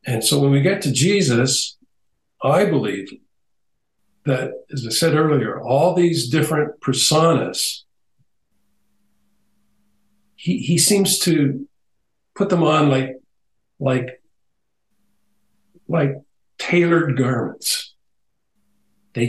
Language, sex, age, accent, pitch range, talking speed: English, male, 50-69, American, 130-195 Hz, 95 wpm